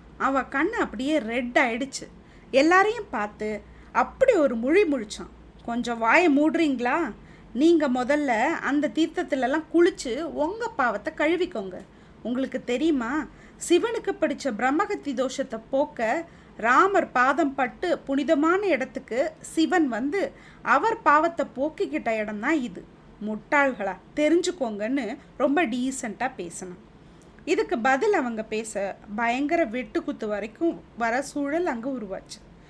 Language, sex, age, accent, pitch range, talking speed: Tamil, female, 30-49, native, 230-320 Hz, 105 wpm